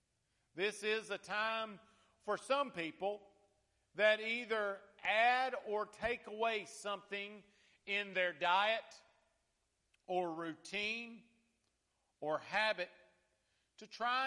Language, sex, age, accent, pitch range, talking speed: English, male, 50-69, American, 175-220 Hz, 95 wpm